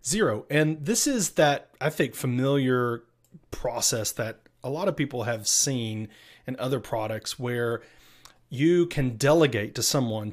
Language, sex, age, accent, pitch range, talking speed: English, male, 30-49, American, 110-135 Hz, 145 wpm